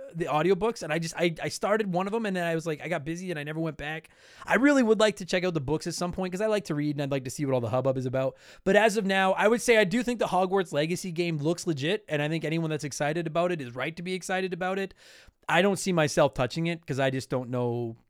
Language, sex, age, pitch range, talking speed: English, male, 30-49, 150-195 Hz, 315 wpm